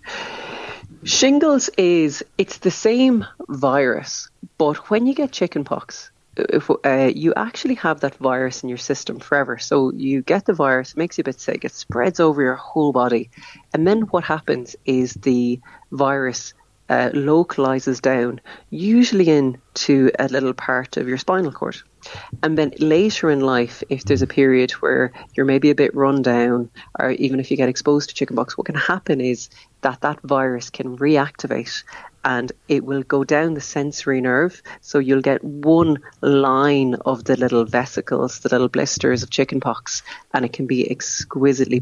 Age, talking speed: 30-49, 170 wpm